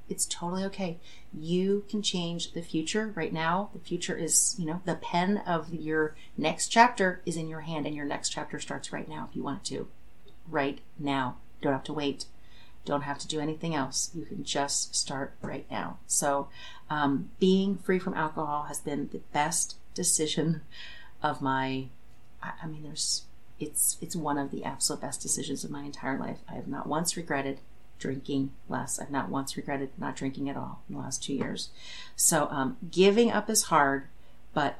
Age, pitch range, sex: 30-49, 135-180 Hz, female